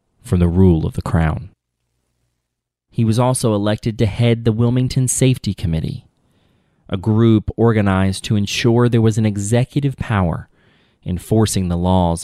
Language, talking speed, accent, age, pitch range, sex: English, 140 wpm, American, 30-49, 90-120 Hz, male